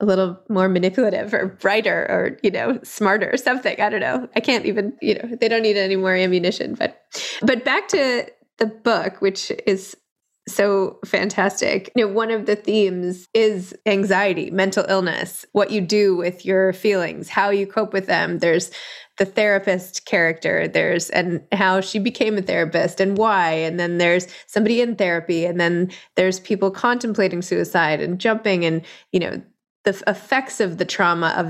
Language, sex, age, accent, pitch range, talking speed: English, female, 20-39, American, 180-210 Hz, 175 wpm